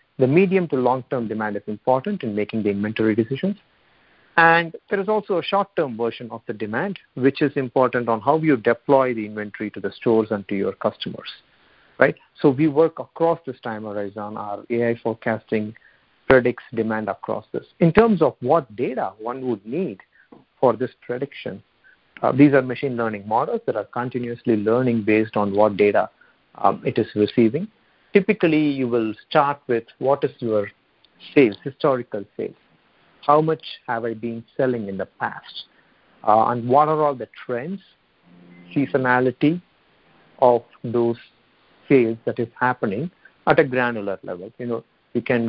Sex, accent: male, Indian